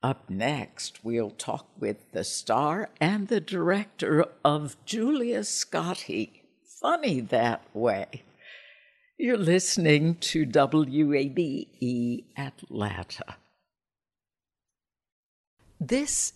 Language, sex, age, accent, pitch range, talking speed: English, female, 60-79, American, 130-180 Hz, 80 wpm